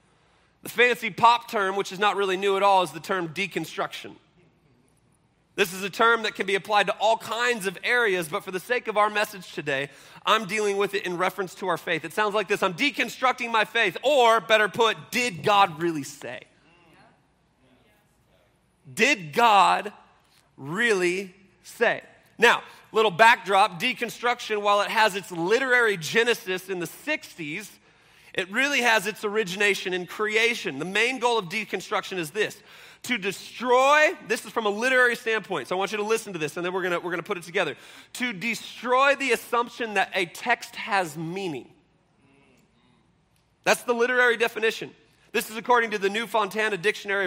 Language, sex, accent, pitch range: English, male, American, 190-230 Hz